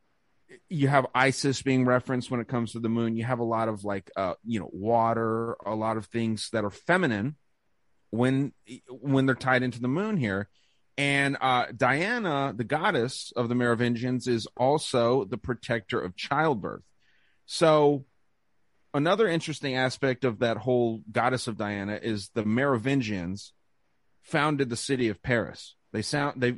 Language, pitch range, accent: English, 110-130 Hz, American